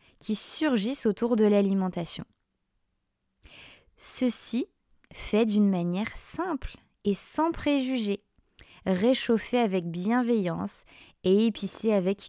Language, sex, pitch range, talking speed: French, female, 190-235 Hz, 95 wpm